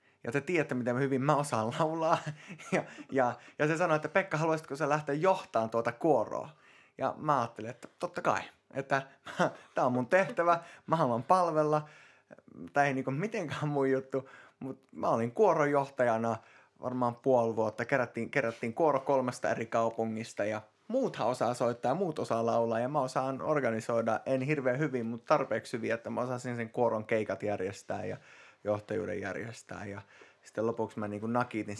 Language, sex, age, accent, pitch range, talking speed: Finnish, male, 20-39, native, 110-140 Hz, 160 wpm